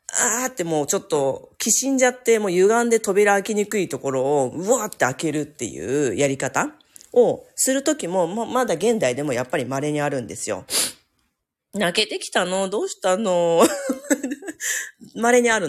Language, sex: Japanese, female